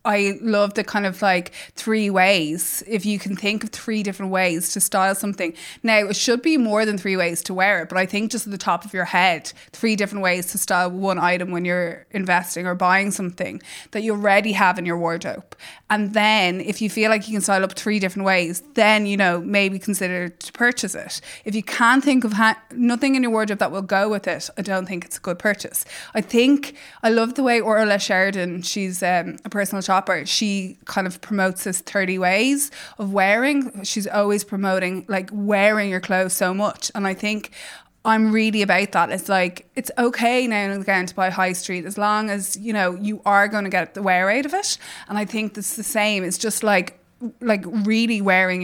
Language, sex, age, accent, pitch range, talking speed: English, female, 20-39, Irish, 185-215 Hz, 220 wpm